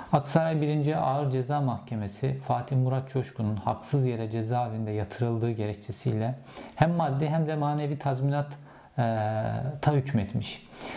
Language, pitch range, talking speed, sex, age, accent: Turkish, 120-145 Hz, 115 wpm, male, 50-69, native